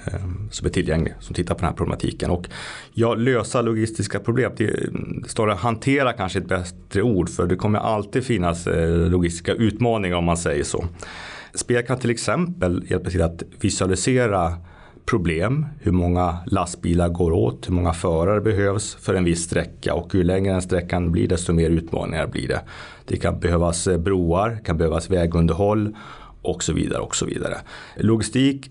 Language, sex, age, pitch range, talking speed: Swedish, male, 30-49, 85-110 Hz, 170 wpm